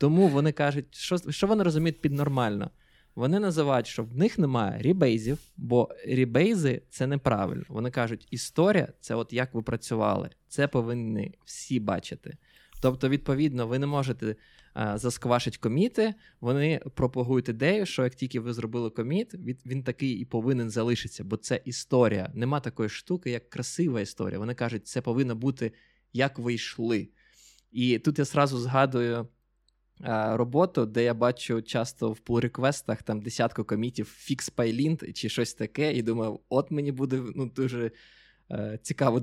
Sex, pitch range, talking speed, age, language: male, 115-145 Hz, 155 wpm, 20-39, Ukrainian